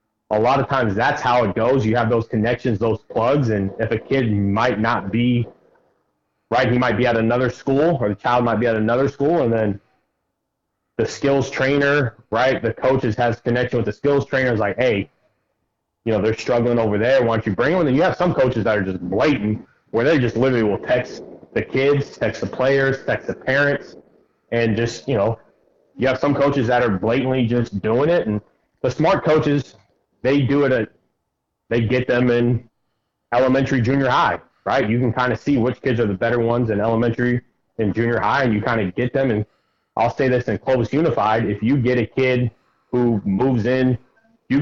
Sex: male